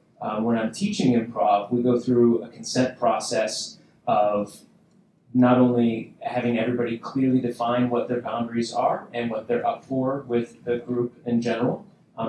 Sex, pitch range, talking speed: male, 115-135 Hz, 160 wpm